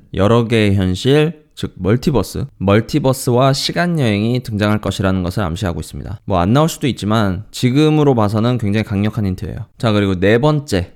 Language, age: Korean, 20-39